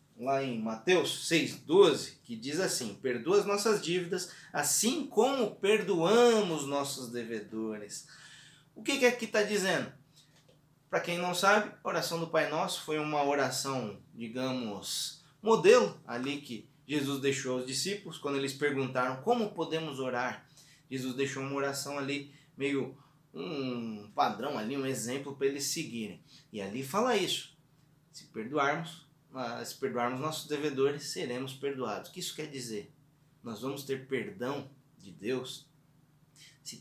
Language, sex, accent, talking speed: Portuguese, male, Brazilian, 140 wpm